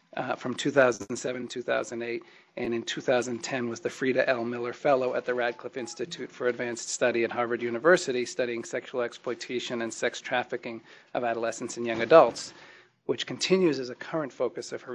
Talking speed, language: 165 wpm, English